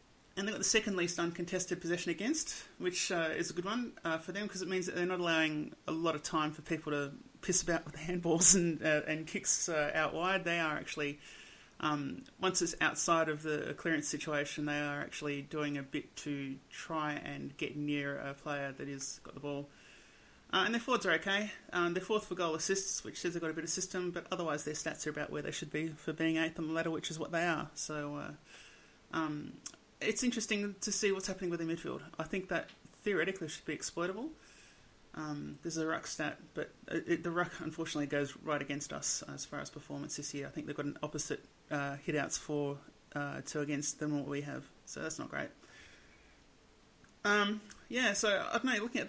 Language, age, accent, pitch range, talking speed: English, 30-49, Australian, 150-195 Hz, 225 wpm